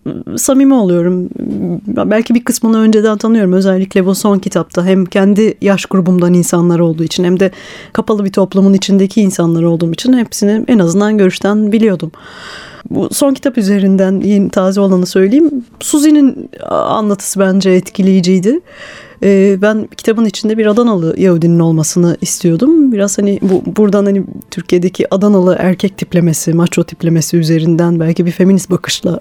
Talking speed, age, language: 140 wpm, 30-49, Turkish